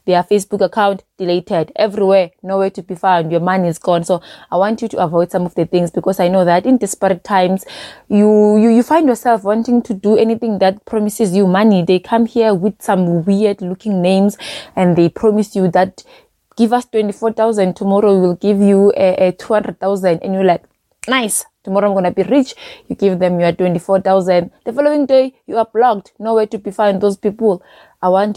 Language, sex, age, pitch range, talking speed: English, female, 20-39, 185-225 Hz, 205 wpm